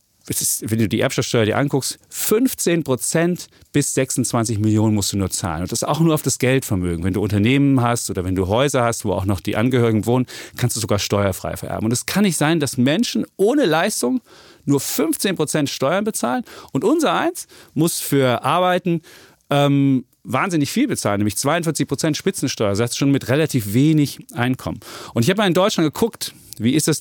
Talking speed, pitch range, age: 190 wpm, 105-140 Hz, 40-59